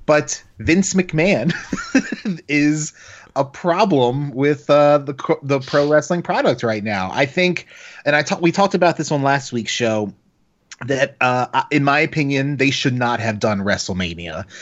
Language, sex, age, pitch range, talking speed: English, male, 30-49, 120-150 Hz, 170 wpm